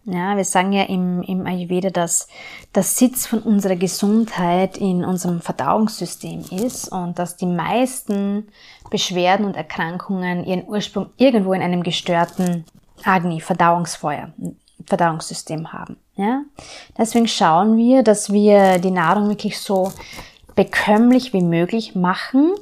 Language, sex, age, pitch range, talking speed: German, female, 20-39, 170-200 Hz, 125 wpm